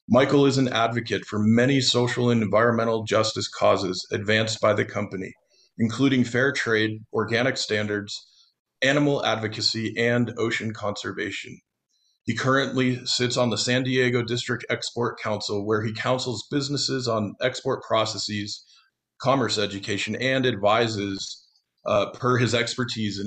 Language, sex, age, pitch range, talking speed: English, male, 40-59, 110-130 Hz, 130 wpm